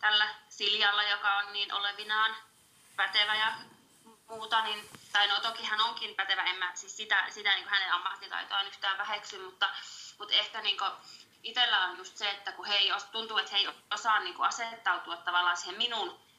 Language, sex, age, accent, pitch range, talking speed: Finnish, female, 20-39, native, 180-215 Hz, 185 wpm